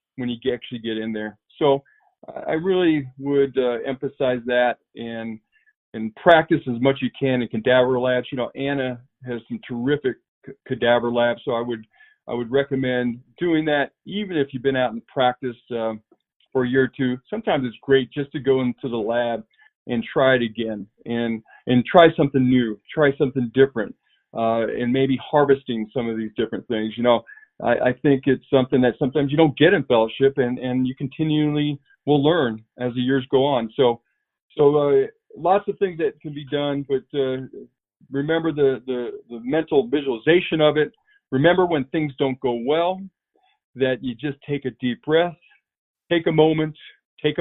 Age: 40-59